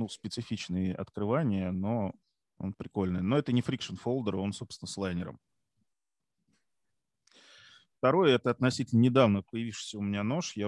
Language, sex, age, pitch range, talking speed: Russian, male, 20-39, 95-115 Hz, 130 wpm